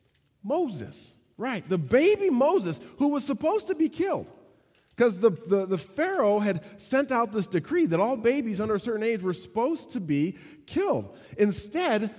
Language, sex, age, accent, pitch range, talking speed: English, male, 40-59, American, 155-225 Hz, 160 wpm